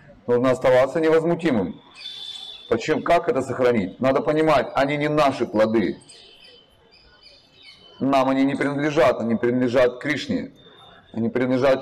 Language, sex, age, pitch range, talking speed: Russian, male, 30-49, 125-165 Hz, 110 wpm